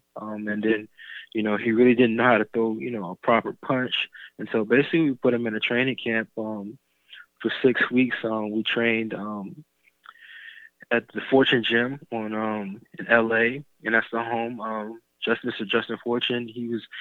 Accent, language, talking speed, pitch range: American, English, 190 wpm, 105-115 Hz